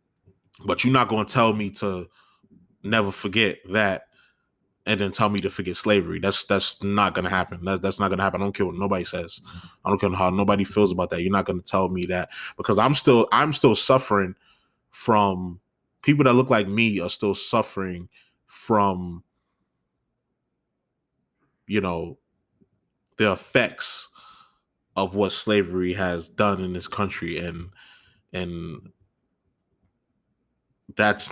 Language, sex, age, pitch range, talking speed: English, male, 20-39, 95-110 Hz, 155 wpm